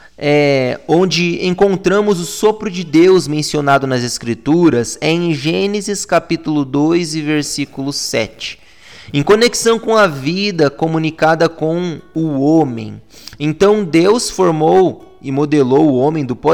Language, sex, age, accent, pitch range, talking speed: Portuguese, male, 20-39, Brazilian, 155-210 Hz, 125 wpm